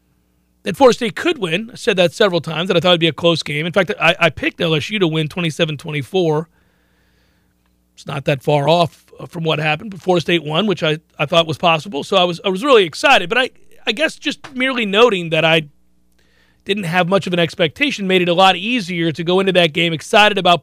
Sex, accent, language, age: male, American, English, 40-59